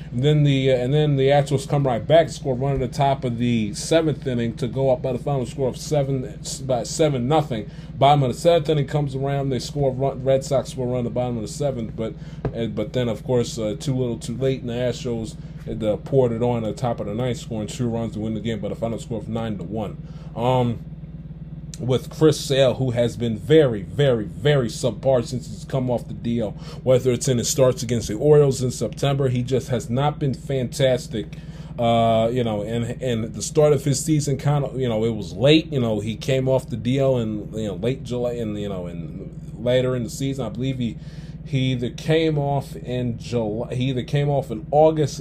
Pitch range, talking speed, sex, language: 120-150 Hz, 235 wpm, male, English